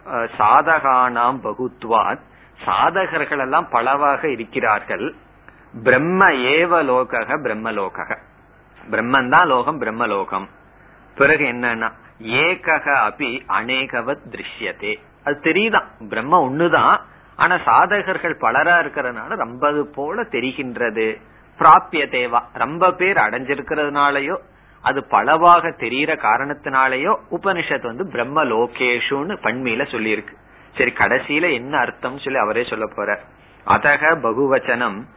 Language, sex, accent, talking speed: Tamil, male, native, 95 wpm